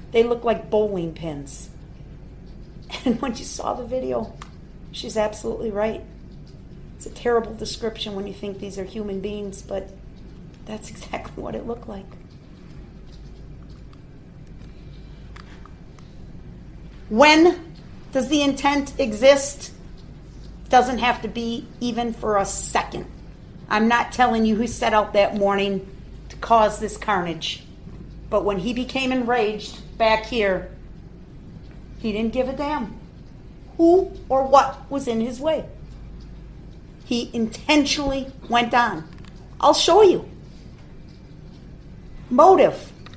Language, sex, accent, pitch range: English, female, American, 210-270 Hz